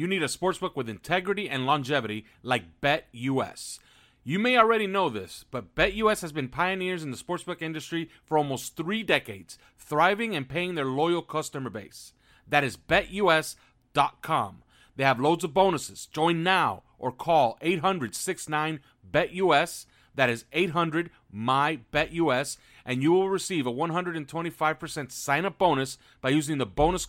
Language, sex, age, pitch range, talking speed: English, male, 40-59, 130-180 Hz, 135 wpm